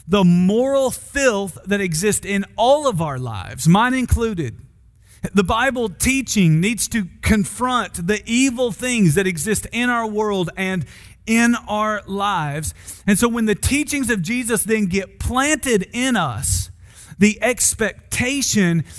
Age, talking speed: 40-59, 140 wpm